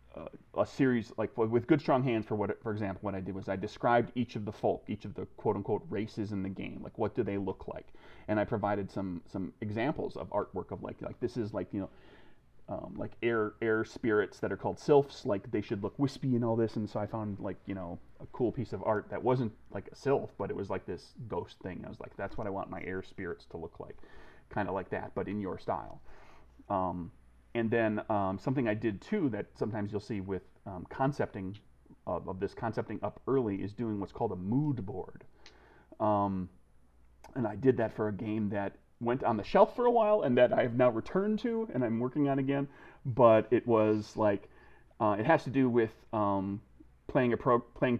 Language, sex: English, male